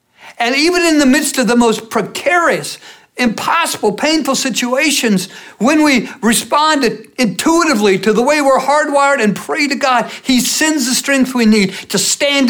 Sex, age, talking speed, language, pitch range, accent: male, 60-79, 160 wpm, English, 170-230 Hz, American